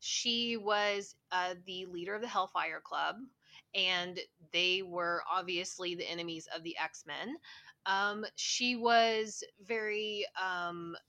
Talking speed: 125 wpm